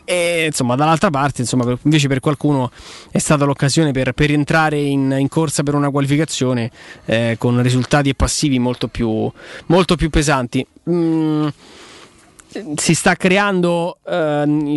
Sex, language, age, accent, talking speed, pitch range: male, Italian, 20-39, native, 140 wpm, 130-155 Hz